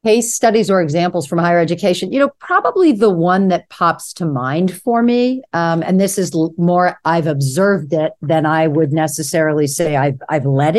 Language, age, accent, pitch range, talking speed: English, 50-69, American, 155-185 Hz, 190 wpm